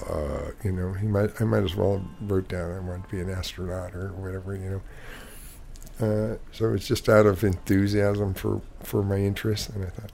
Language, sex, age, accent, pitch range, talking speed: English, male, 50-69, American, 90-110 Hz, 205 wpm